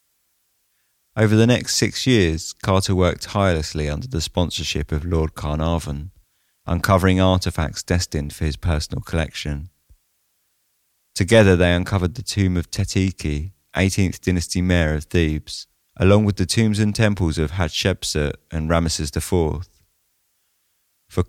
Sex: male